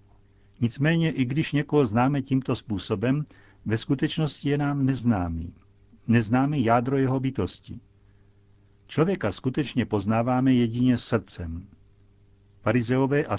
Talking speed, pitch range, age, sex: 105 wpm, 100-130 Hz, 60-79, male